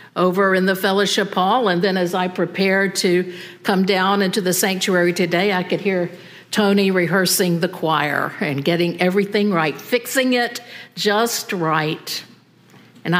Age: 50-69